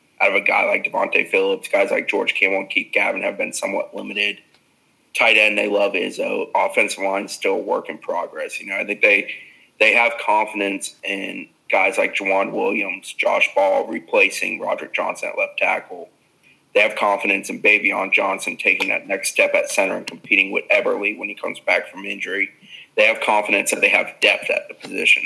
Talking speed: 200 wpm